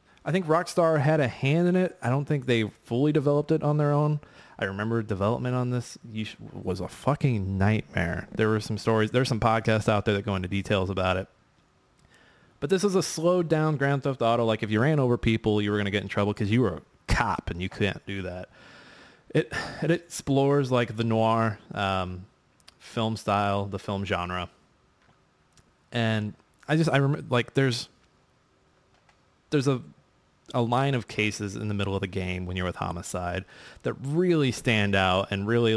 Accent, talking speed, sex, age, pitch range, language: American, 190 wpm, male, 20-39, 95-125 Hz, English